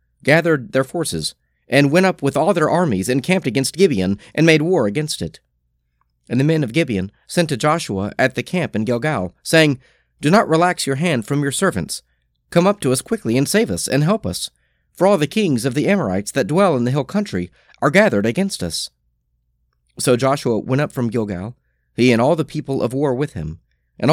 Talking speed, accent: 210 wpm, American